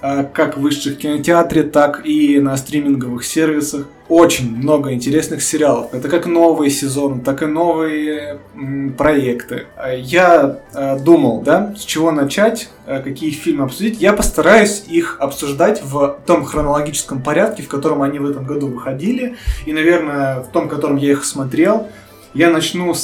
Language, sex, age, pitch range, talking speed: Russian, male, 20-39, 135-165 Hz, 145 wpm